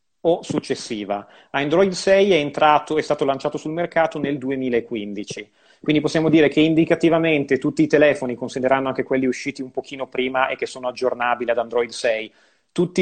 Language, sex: Italian, male